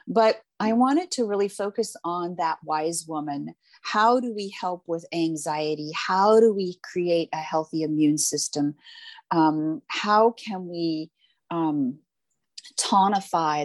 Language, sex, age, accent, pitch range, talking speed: English, female, 40-59, American, 155-215 Hz, 130 wpm